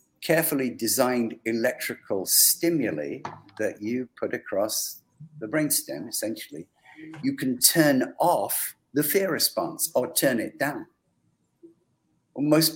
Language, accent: English, British